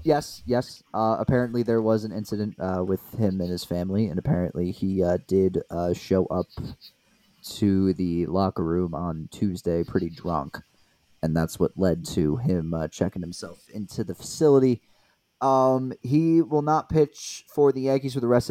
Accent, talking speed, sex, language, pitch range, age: American, 170 wpm, male, English, 90-120 Hz, 30-49